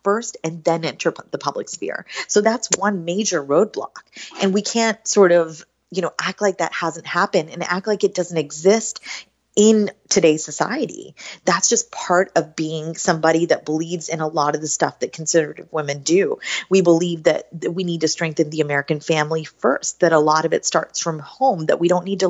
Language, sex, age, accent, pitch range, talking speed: English, female, 30-49, American, 160-195 Hz, 200 wpm